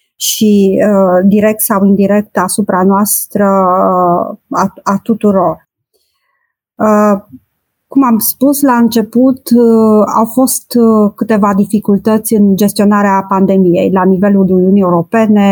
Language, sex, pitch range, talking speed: Romanian, female, 195-225 Hz, 115 wpm